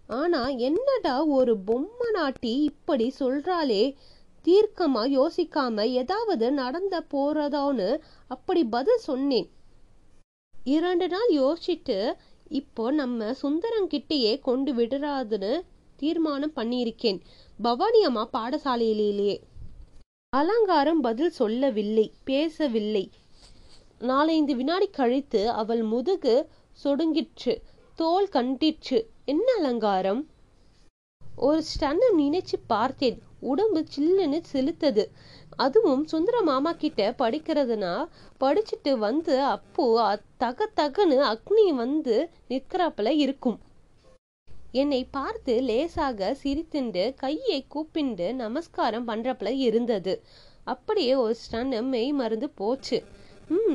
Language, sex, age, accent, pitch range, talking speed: Tamil, female, 20-39, native, 240-325 Hz, 75 wpm